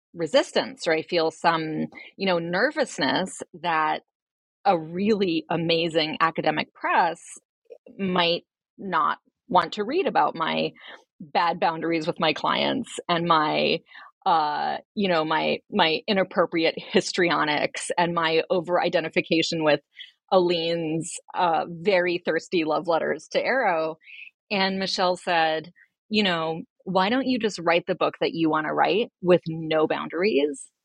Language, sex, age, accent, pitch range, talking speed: English, female, 30-49, American, 155-185 Hz, 130 wpm